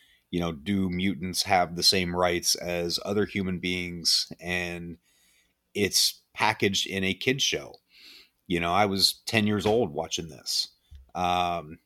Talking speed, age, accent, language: 145 wpm, 30-49, American, English